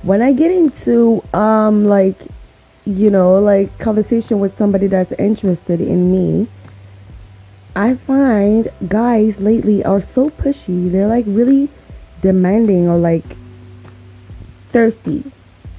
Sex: female